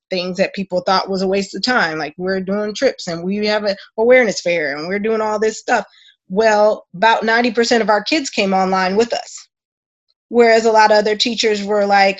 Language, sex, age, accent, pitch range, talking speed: English, female, 20-39, American, 190-235 Hz, 210 wpm